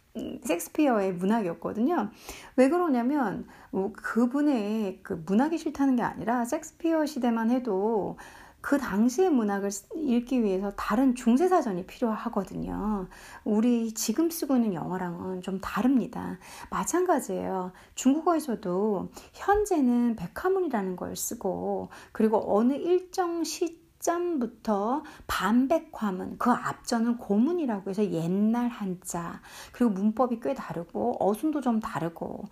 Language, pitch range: Korean, 195-285 Hz